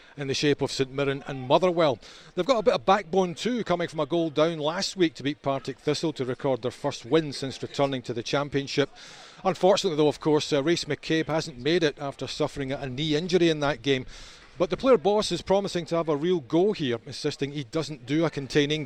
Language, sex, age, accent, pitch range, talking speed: English, male, 40-59, British, 135-160 Hz, 230 wpm